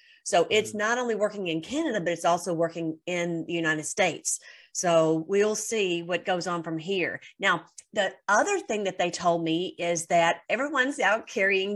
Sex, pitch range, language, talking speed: female, 175-235 Hz, English, 185 wpm